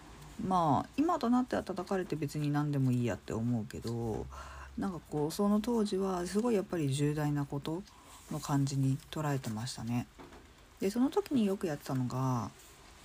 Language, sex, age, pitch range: Japanese, female, 40-59, 130-210 Hz